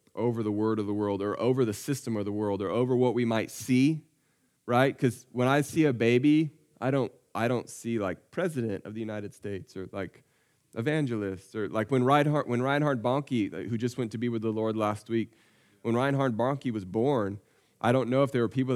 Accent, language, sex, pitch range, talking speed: American, English, male, 105-130 Hz, 220 wpm